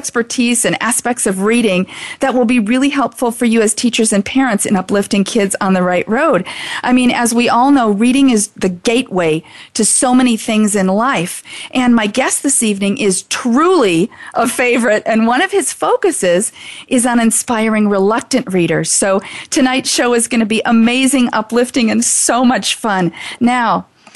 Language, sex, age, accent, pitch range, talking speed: English, female, 40-59, American, 205-255 Hz, 180 wpm